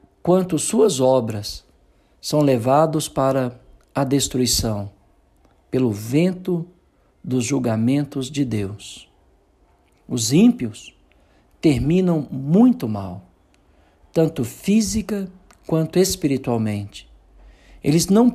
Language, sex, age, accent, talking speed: Portuguese, male, 60-79, Brazilian, 80 wpm